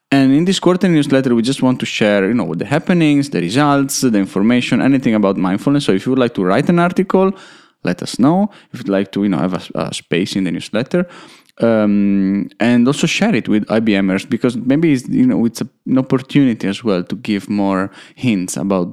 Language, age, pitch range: English, 10-29, 100-135 Hz